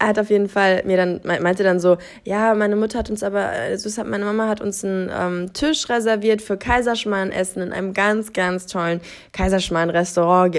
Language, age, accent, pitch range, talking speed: German, 20-39, German, 185-220 Hz, 200 wpm